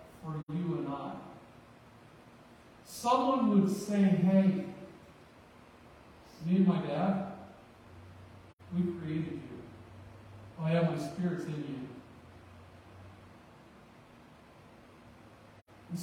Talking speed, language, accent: 80 wpm, English, American